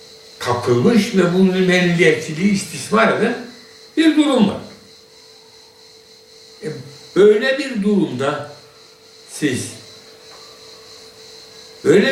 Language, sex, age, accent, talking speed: Turkish, male, 60-79, native, 70 wpm